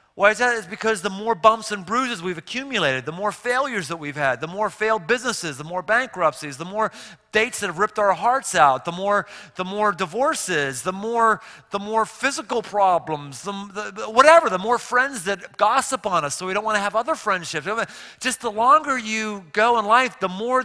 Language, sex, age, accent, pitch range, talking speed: English, male, 30-49, American, 165-225 Hz, 210 wpm